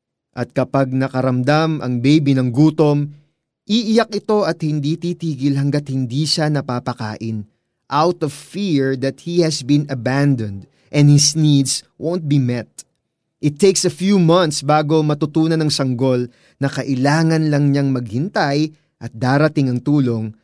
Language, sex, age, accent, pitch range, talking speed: Filipino, male, 20-39, native, 130-160 Hz, 140 wpm